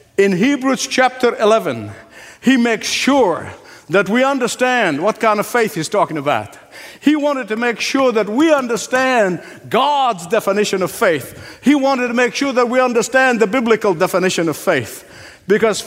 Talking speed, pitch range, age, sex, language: 165 wpm, 180-240 Hz, 60-79, male, English